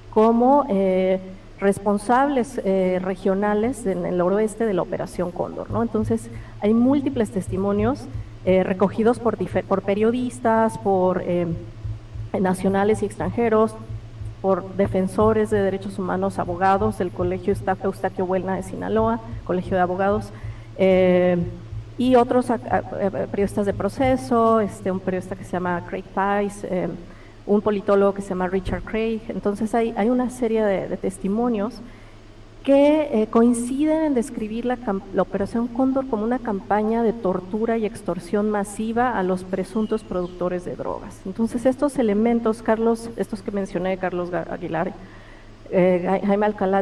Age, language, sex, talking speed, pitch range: 40-59, Spanish, female, 145 wpm, 185-225 Hz